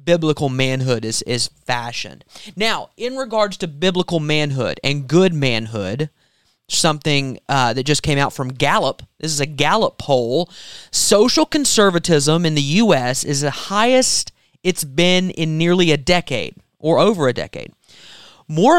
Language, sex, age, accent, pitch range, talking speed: English, male, 30-49, American, 145-205 Hz, 145 wpm